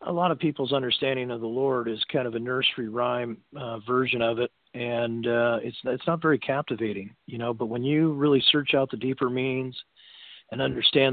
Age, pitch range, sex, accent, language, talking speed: 40-59, 120-135 Hz, male, American, English, 205 wpm